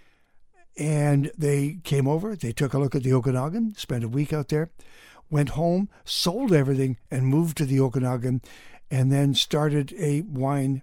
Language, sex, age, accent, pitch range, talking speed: English, male, 60-79, American, 120-145 Hz, 165 wpm